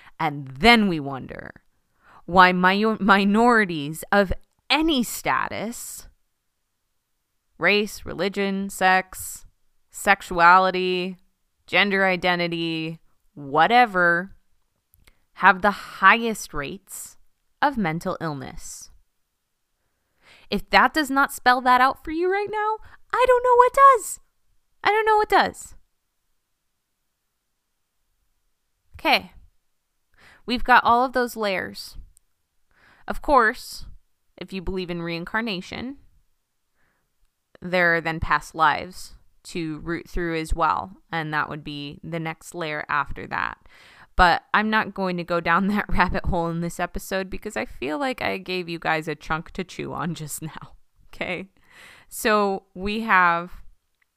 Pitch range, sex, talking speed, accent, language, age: 165-215 Hz, female, 120 wpm, American, English, 20-39